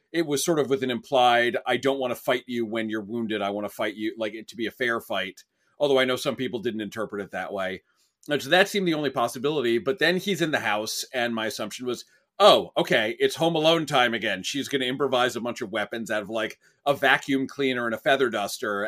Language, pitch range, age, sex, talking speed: English, 110-135 Hz, 40-59, male, 250 wpm